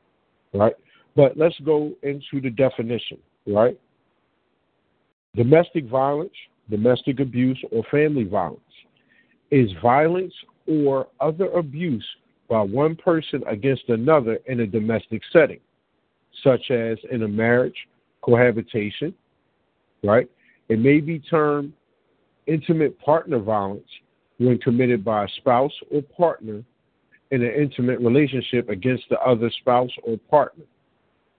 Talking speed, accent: 115 wpm, American